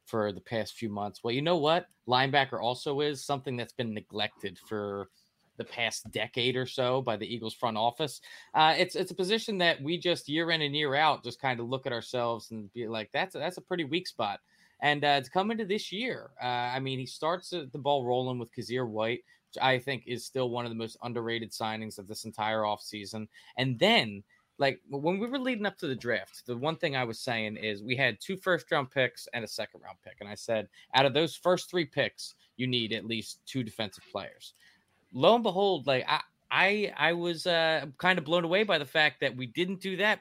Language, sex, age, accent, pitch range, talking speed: English, male, 20-39, American, 110-160 Hz, 225 wpm